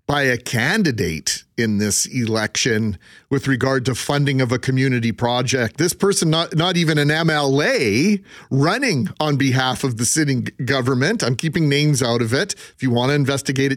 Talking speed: 170 wpm